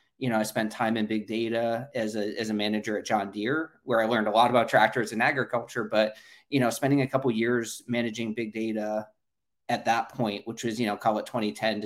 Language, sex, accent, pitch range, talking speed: English, male, American, 110-120 Hz, 240 wpm